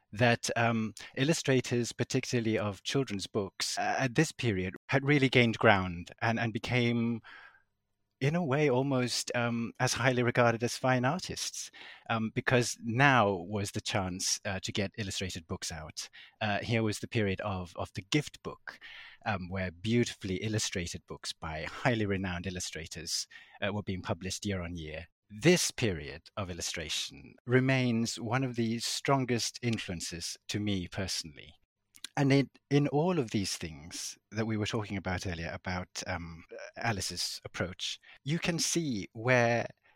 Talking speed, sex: 150 wpm, male